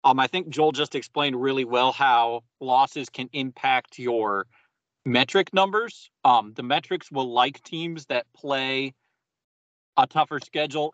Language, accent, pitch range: English, American, 120-145 Hz